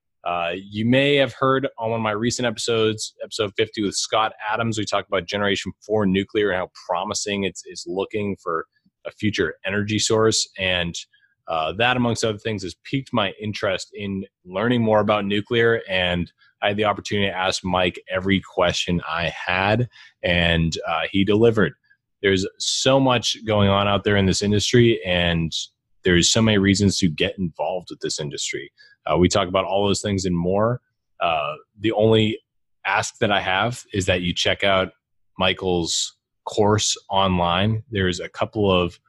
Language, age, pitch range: English, 30-49, 95-115 Hz